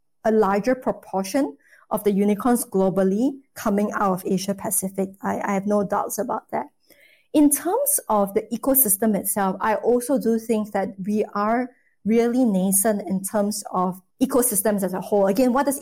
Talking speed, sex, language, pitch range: 165 wpm, female, English, 200-255 Hz